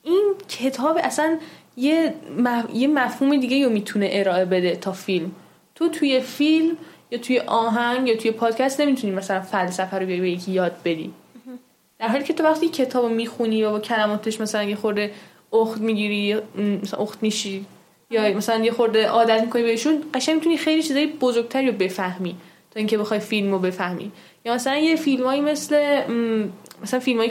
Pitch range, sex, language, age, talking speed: 195-250 Hz, female, Persian, 10-29, 165 wpm